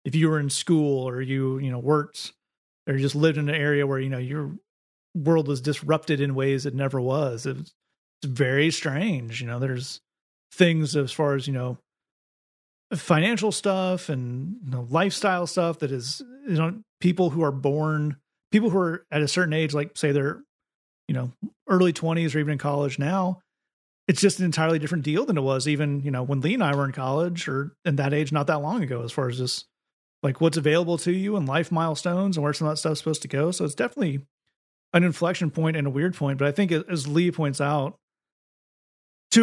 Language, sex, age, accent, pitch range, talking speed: English, male, 30-49, American, 140-165 Hz, 220 wpm